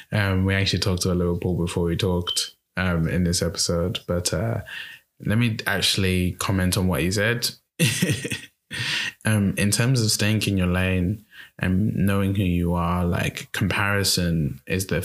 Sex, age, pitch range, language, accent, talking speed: male, 20-39, 85-100 Hz, English, British, 165 wpm